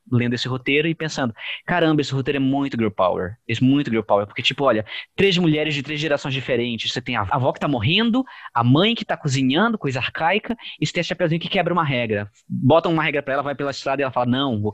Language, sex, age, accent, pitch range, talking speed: Portuguese, male, 20-39, Brazilian, 115-160 Hz, 245 wpm